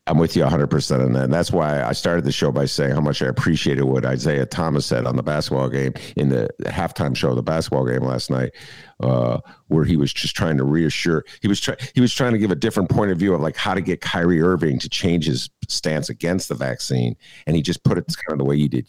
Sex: male